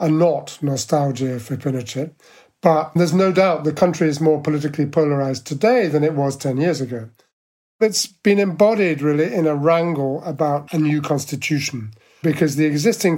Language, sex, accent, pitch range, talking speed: English, male, British, 140-170 Hz, 165 wpm